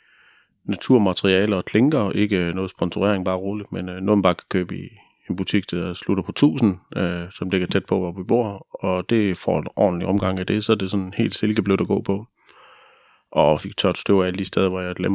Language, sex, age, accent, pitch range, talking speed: Danish, male, 30-49, native, 95-105 Hz, 230 wpm